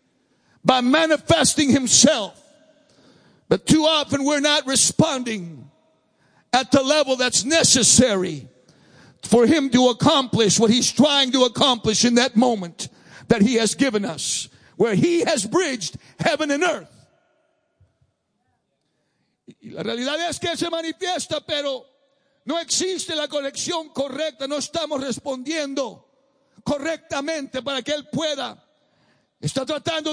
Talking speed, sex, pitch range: 120 wpm, male, 255-310 Hz